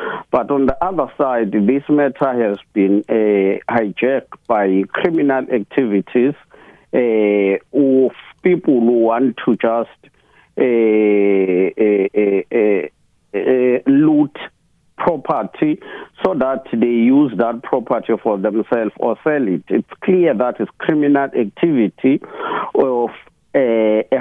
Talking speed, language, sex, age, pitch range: 115 wpm, English, male, 50-69, 110-140 Hz